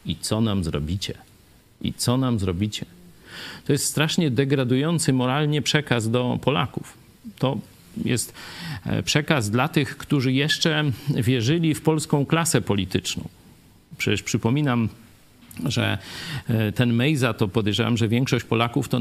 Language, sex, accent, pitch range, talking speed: Polish, male, native, 115-155 Hz, 125 wpm